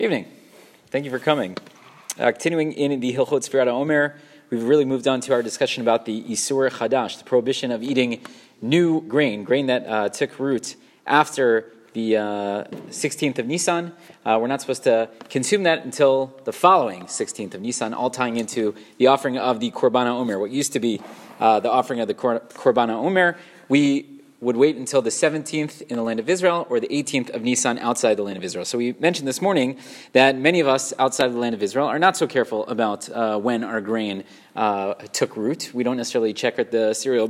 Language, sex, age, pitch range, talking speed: English, male, 30-49, 120-155 Hz, 205 wpm